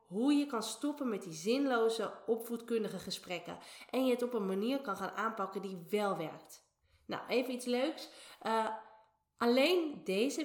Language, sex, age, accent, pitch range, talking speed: Dutch, female, 20-39, Dutch, 180-235 Hz, 160 wpm